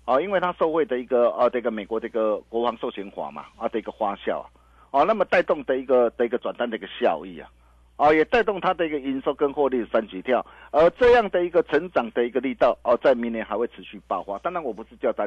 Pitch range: 120-185 Hz